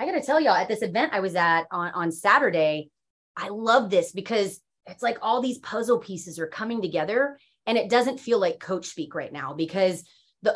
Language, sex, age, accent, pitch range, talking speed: English, female, 30-49, American, 175-235 Hz, 220 wpm